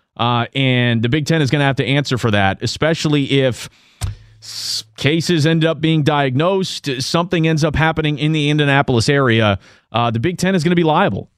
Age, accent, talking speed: 30-49, American, 200 wpm